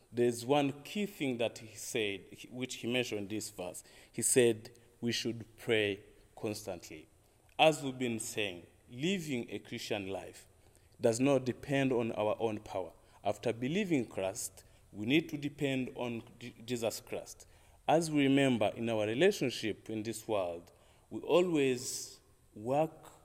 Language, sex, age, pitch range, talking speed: English, male, 30-49, 105-130 Hz, 145 wpm